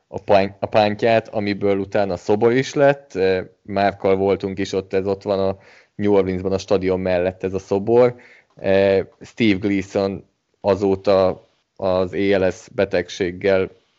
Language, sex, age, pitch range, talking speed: Hungarian, male, 20-39, 95-105 Hz, 130 wpm